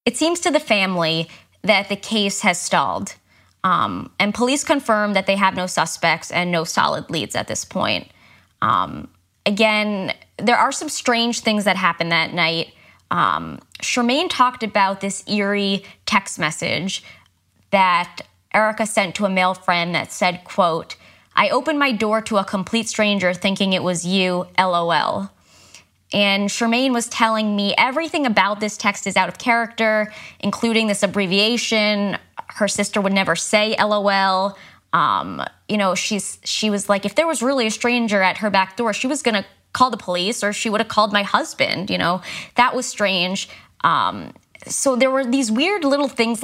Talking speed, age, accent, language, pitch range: 170 wpm, 20-39, American, English, 185-230 Hz